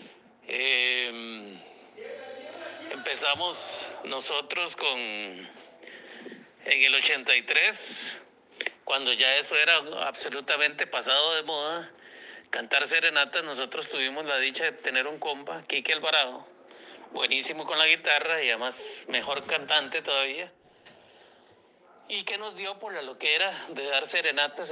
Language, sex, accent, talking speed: Spanish, male, Mexican, 115 wpm